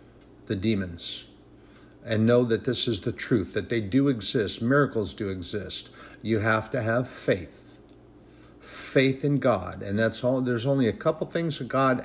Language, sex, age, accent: English, male, 60-79, American